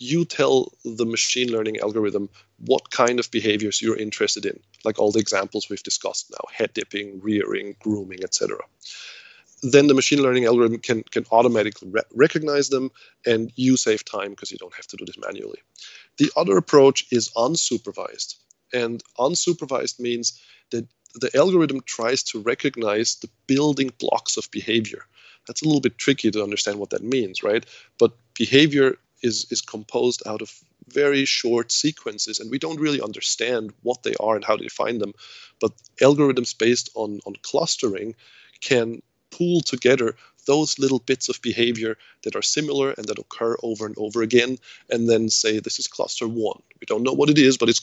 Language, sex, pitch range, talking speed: English, male, 110-140 Hz, 175 wpm